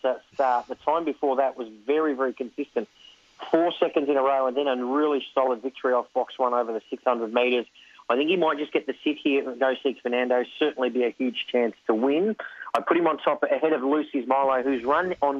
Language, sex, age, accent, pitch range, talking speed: English, male, 40-59, Australian, 125-145 Hz, 230 wpm